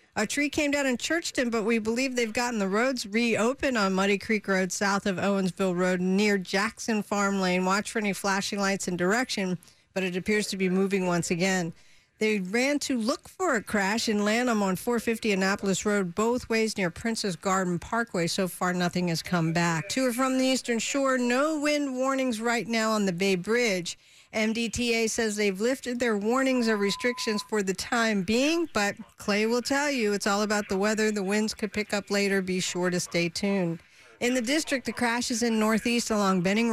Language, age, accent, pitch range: English, 50-69, American, 190-240 Hz